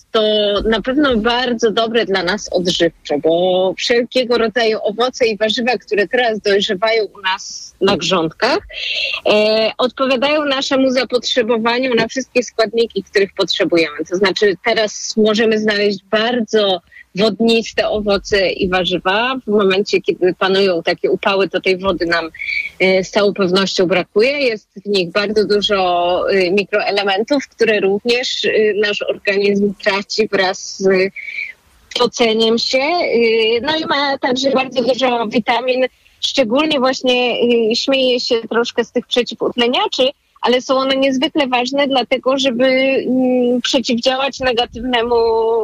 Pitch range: 200-255 Hz